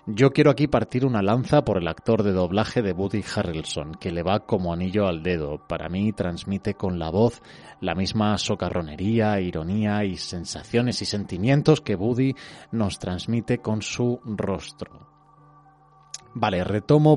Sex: male